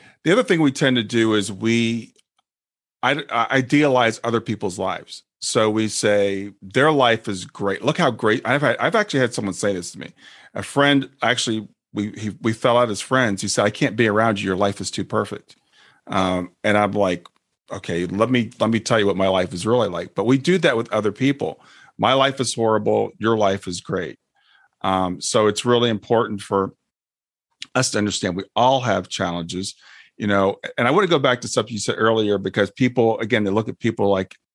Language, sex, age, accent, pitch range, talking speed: English, male, 40-59, American, 100-120 Hz, 210 wpm